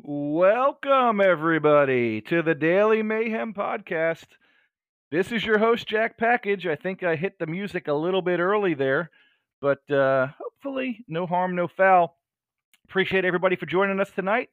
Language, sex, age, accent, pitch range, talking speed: English, male, 40-59, American, 135-175 Hz, 155 wpm